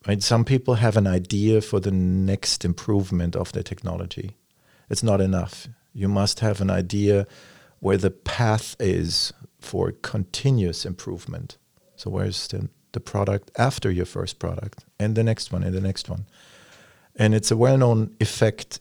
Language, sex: English, male